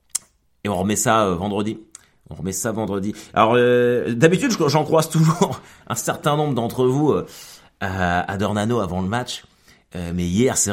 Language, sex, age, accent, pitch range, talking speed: French, male, 30-49, French, 95-130 Hz, 175 wpm